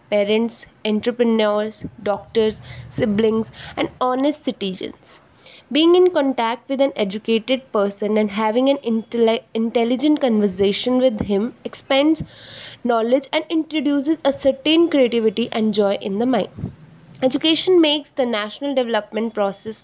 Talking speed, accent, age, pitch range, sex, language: 120 wpm, Indian, 20-39, 215-270 Hz, female, English